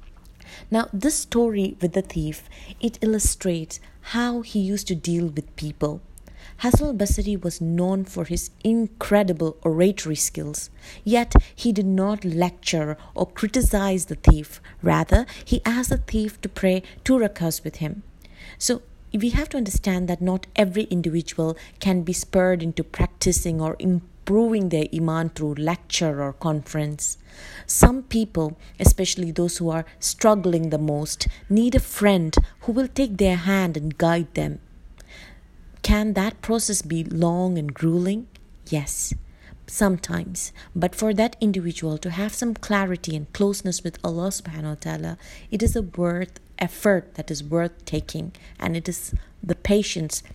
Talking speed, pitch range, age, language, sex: 150 wpm, 155-200 Hz, 30-49, English, female